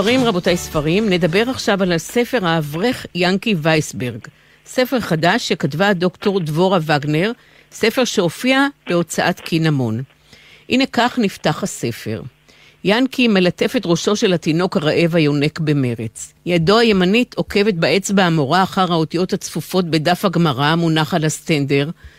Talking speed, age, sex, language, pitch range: 125 wpm, 50-69, female, Hebrew, 160-210 Hz